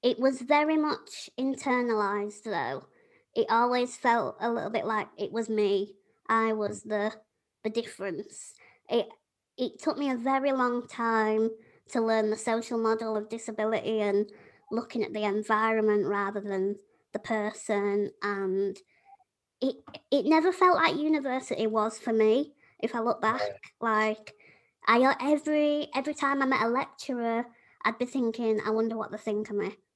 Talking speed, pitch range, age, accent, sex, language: 155 wpm, 210-245 Hz, 20-39, British, male, English